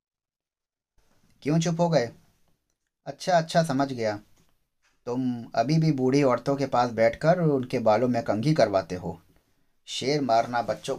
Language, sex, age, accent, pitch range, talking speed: Hindi, male, 30-49, native, 90-130 Hz, 135 wpm